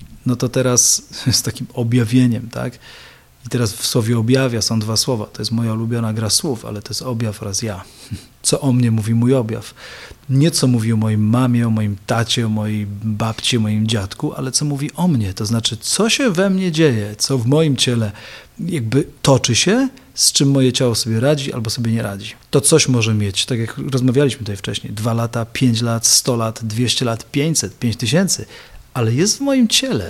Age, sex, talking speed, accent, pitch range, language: 40-59, male, 205 wpm, native, 110-135 Hz, Polish